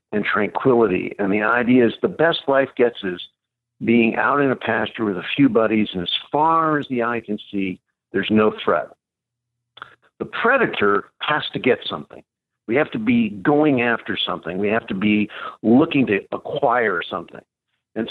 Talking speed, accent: 175 wpm, American